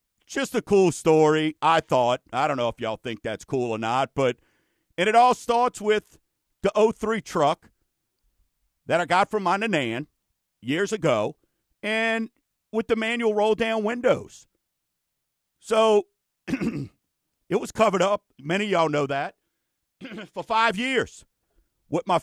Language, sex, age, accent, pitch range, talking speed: English, male, 50-69, American, 165-220 Hz, 145 wpm